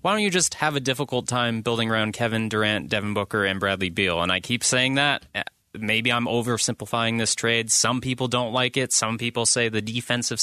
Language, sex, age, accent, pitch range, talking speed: English, male, 20-39, American, 110-130 Hz, 215 wpm